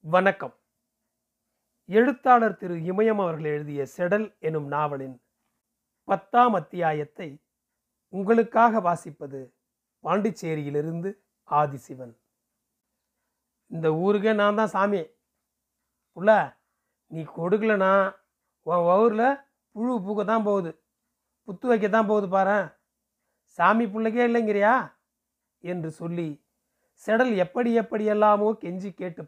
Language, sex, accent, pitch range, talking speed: Tamil, male, native, 160-220 Hz, 85 wpm